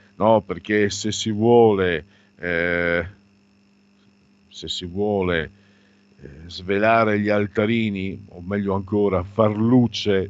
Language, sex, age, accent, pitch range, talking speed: Italian, male, 50-69, native, 90-110 Hz, 105 wpm